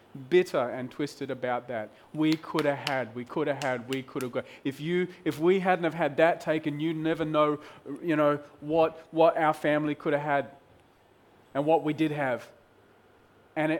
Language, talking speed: English, 190 wpm